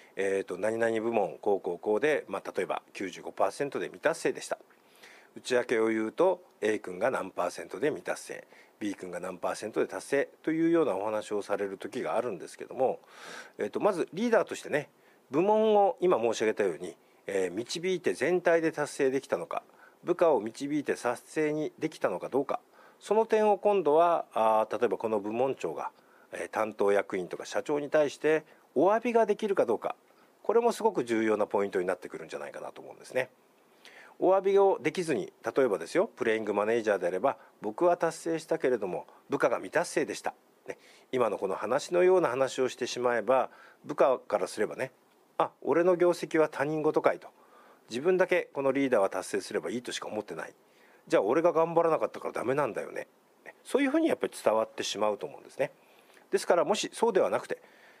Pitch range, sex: 125-210 Hz, male